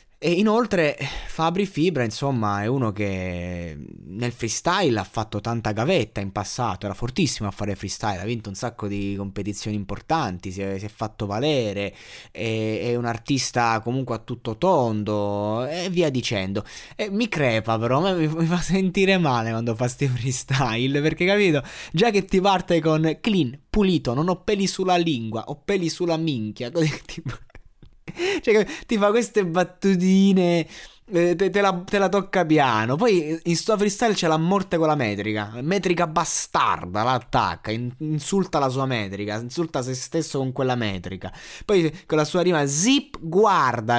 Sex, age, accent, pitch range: male, 20-39, native, 115-175 Hz